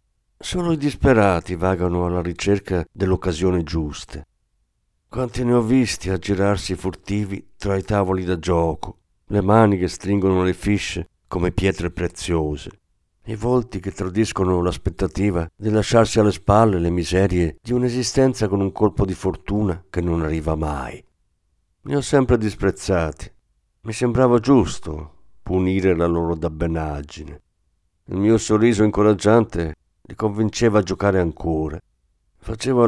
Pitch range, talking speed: 85-110 Hz, 130 wpm